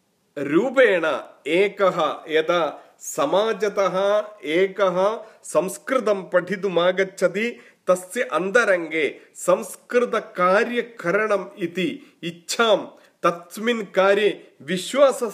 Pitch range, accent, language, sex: 175-235 Hz, native, Hindi, male